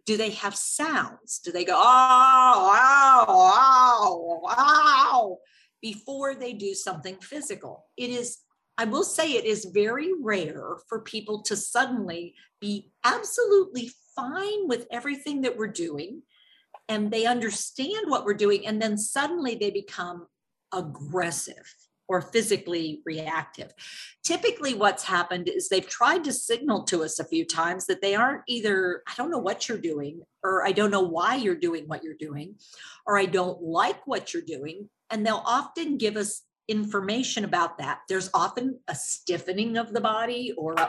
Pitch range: 190-265 Hz